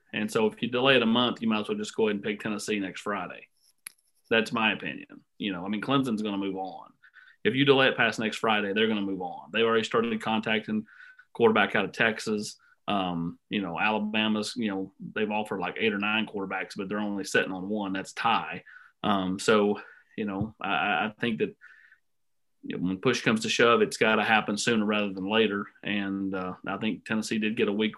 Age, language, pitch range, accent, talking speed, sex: 30-49, English, 105-130 Hz, American, 220 wpm, male